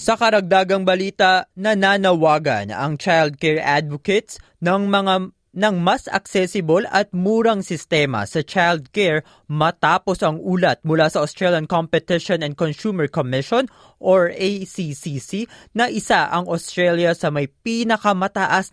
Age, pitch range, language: 20-39, 155-200 Hz, Filipino